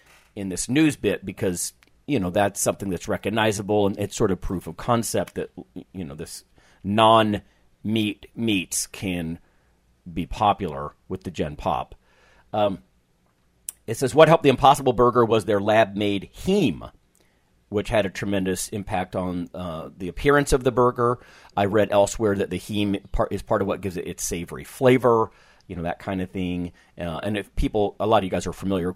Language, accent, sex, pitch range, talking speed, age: English, American, male, 90-110 Hz, 190 wpm, 40-59